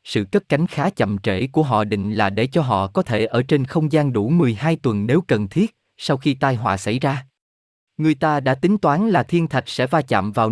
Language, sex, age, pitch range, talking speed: Vietnamese, male, 20-39, 115-155 Hz, 245 wpm